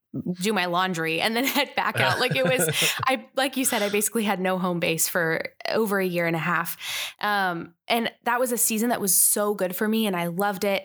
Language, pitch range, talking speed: English, 180-210 Hz, 245 wpm